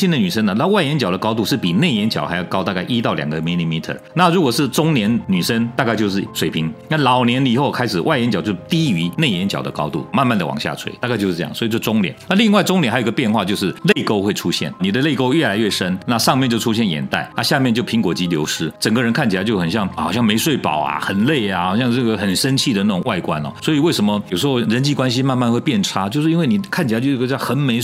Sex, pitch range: male, 115-185 Hz